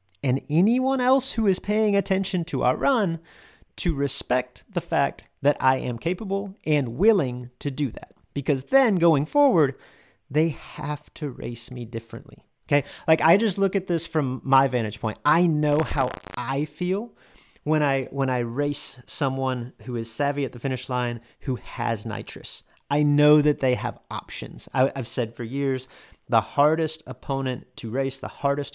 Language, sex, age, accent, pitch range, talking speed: English, male, 30-49, American, 120-160 Hz, 170 wpm